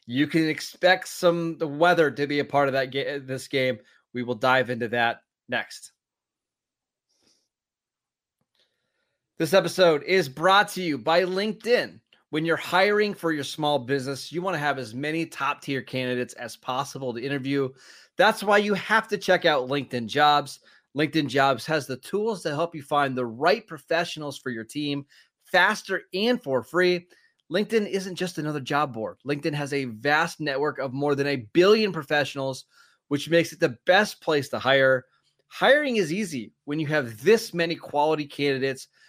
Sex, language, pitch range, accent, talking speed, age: male, English, 135-175 Hz, American, 170 wpm, 30-49